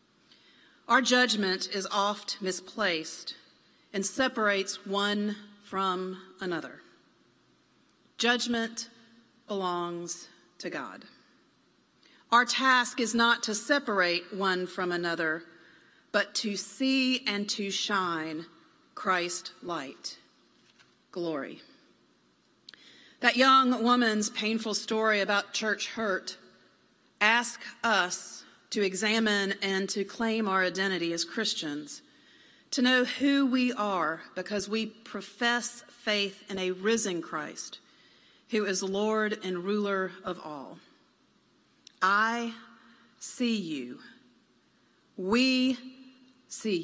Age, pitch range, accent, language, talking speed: 40-59, 190-240 Hz, American, English, 95 wpm